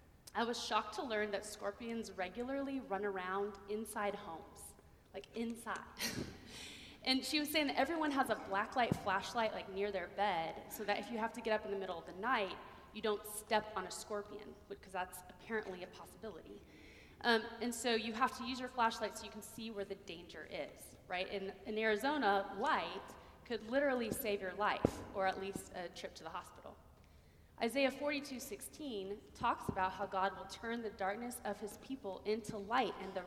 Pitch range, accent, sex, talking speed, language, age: 190-230 Hz, American, female, 190 wpm, English, 20-39